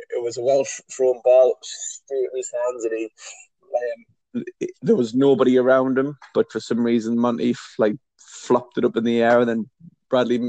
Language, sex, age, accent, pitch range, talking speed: English, male, 20-39, British, 120-145 Hz, 190 wpm